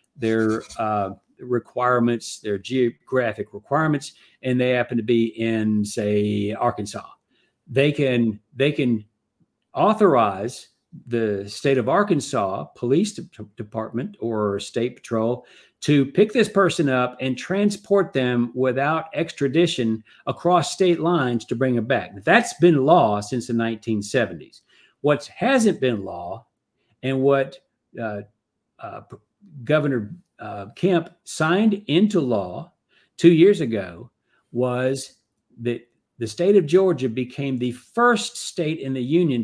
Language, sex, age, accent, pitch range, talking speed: English, male, 50-69, American, 115-175 Hz, 125 wpm